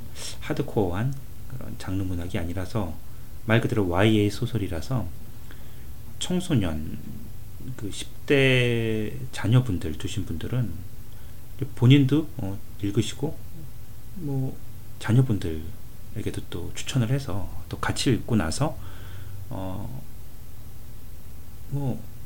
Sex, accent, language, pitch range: male, native, Korean, 100-120 Hz